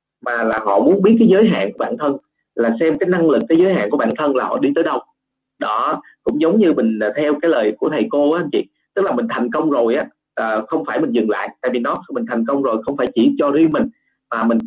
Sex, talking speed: male, 280 wpm